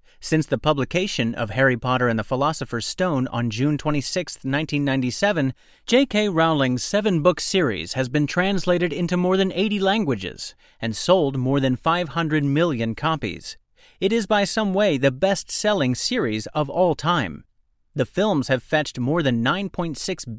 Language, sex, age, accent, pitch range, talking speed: English, male, 30-49, American, 125-185 Hz, 150 wpm